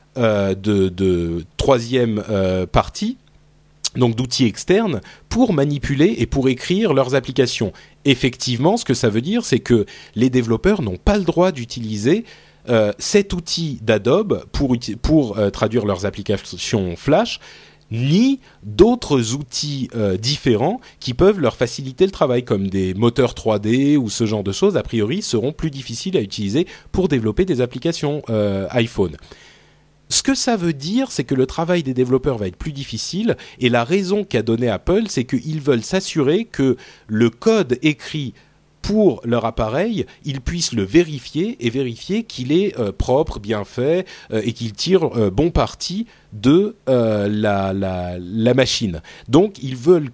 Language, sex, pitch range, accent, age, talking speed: French, male, 115-170 Hz, French, 30-49, 160 wpm